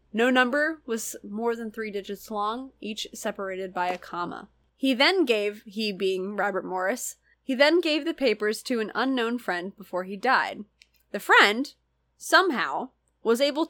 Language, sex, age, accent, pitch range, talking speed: English, female, 20-39, American, 200-275 Hz, 160 wpm